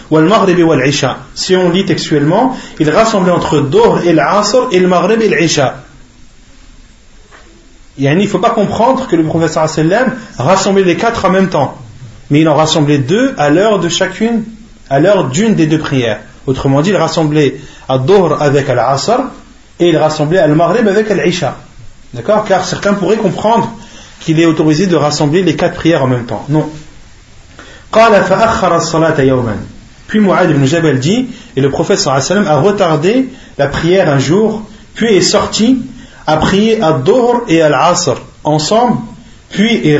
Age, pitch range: 40-59, 140-200 Hz